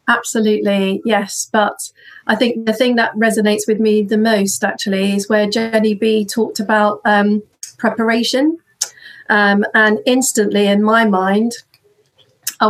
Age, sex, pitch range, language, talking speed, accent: 40-59, female, 205-240 Hz, English, 135 wpm, British